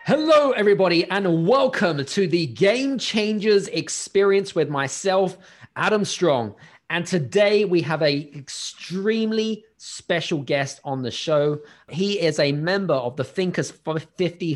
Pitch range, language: 140-185 Hz, English